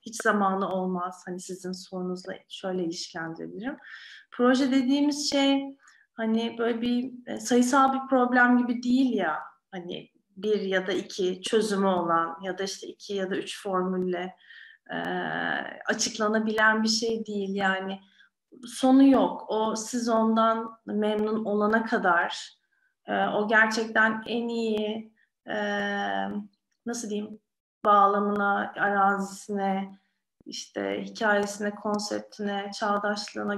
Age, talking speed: 30-49, 115 wpm